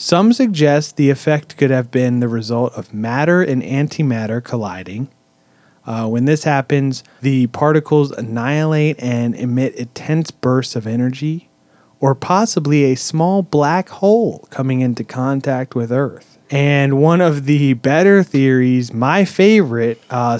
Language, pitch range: English, 125-160 Hz